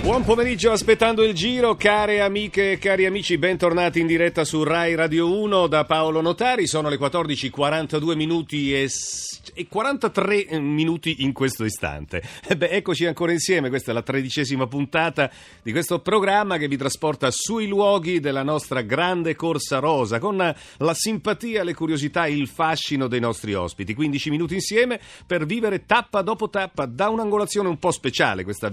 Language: Italian